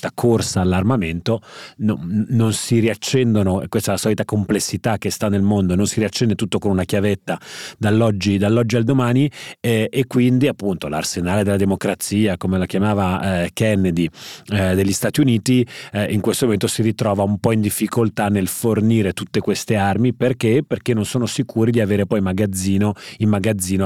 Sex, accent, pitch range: male, native, 90-110 Hz